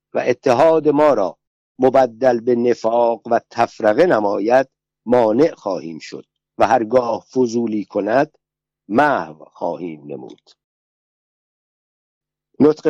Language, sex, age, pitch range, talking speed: Persian, male, 60-79, 115-145 Hz, 100 wpm